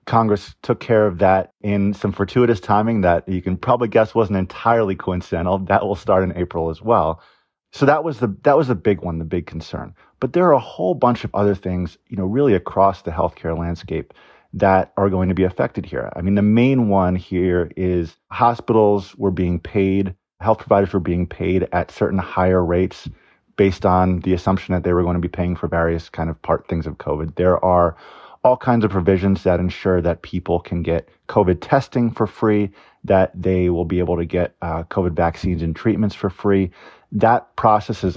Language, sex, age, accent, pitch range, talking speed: English, male, 30-49, American, 85-105 Hz, 205 wpm